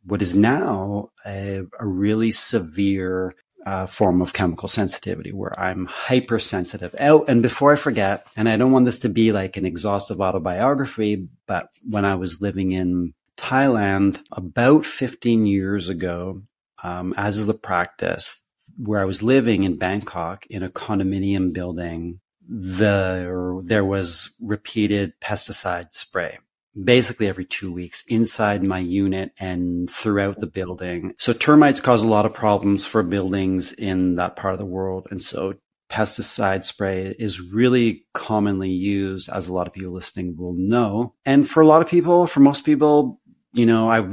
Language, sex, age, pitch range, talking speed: English, male, 30-49, 95-110 Hz, 160 wpm